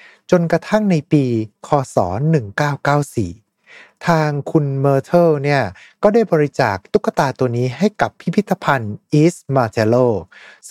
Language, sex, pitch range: Thai, male, 115-160 Hz